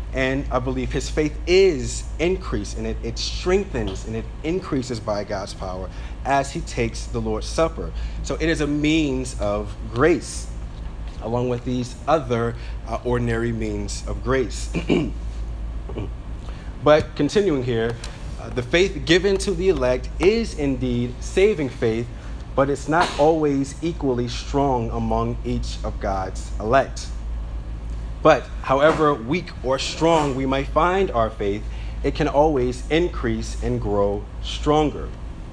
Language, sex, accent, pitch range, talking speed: English, male, American, 105-145 Hz, 135 wpm